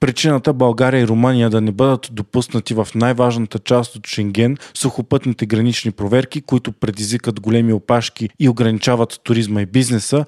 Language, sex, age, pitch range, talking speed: Bulgarian, male, 20-39, 110-130 Hz, 145 wpm